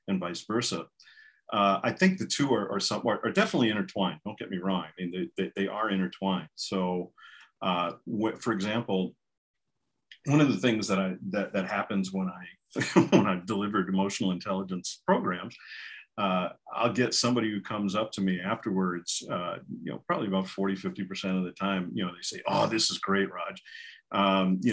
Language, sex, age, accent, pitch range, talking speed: English, male, 50-69, American, 95-135 Hz, 190 wpm